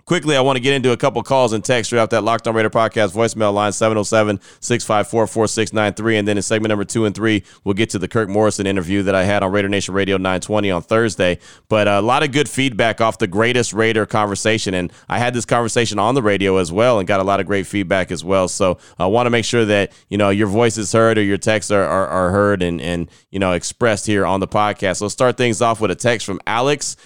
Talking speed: 255 wpm